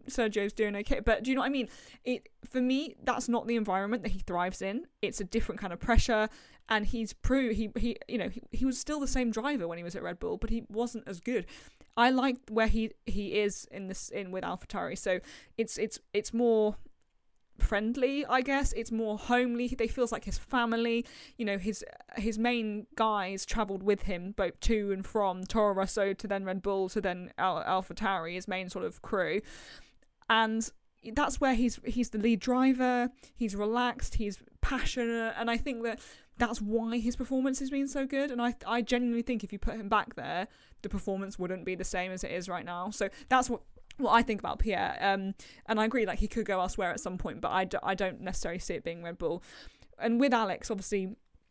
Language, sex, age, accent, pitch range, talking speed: English, female, 20-39, British, 200-245 Hz, 220 wpm